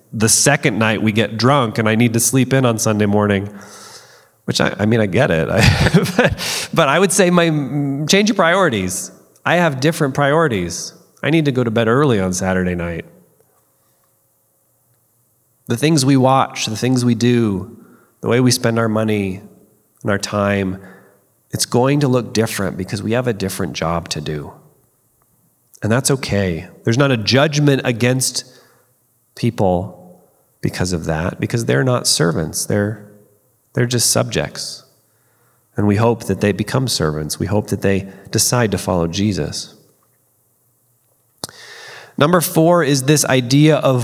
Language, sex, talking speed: English, male, 160 wpm